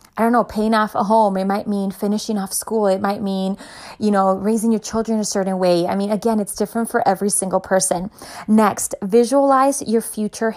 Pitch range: 195-230 Hz